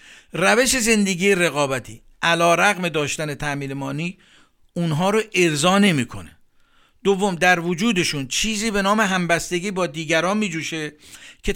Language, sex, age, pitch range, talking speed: Persian, male, 50-69, 155-195 Hz, 115 wpm